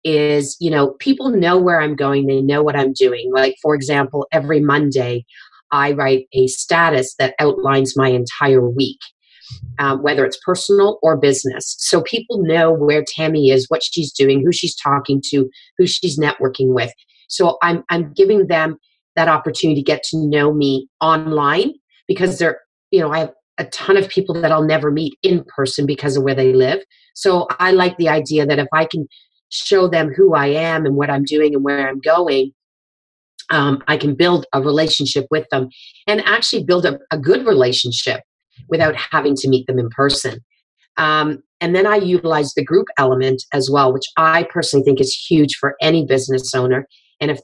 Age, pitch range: 30-49, 135-165 Hz